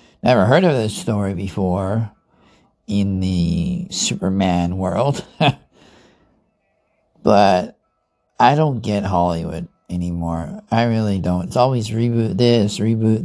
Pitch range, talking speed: 95-125 Hz, 110 wpm